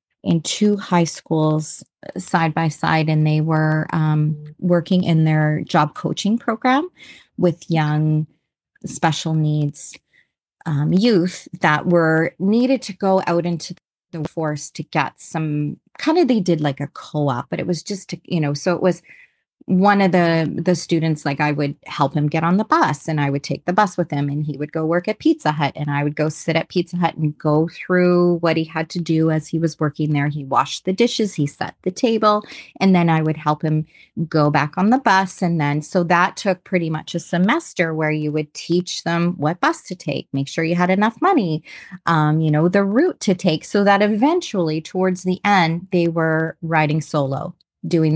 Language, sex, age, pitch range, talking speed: English, female, 30-49, 155-185 Hz, 205 wpm